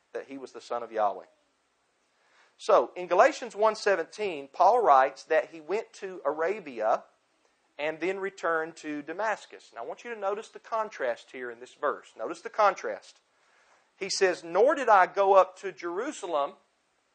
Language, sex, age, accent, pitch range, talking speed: English, male, 40-59, American, 145-190 Hz, 165 wpm